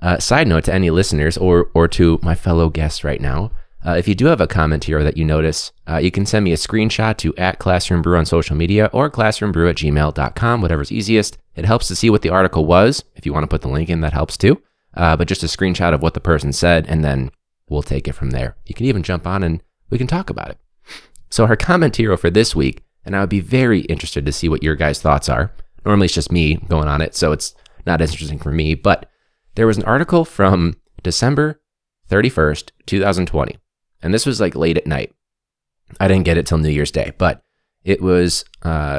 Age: 20-39